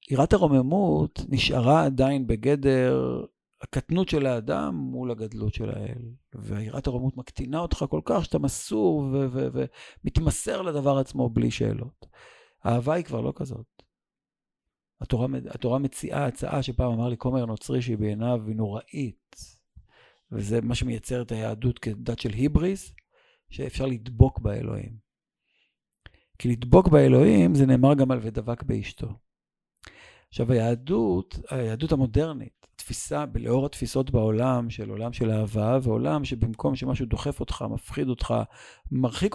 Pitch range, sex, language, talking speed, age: 115-140 Hz, male, Hebrew, 130 wpm, 50-69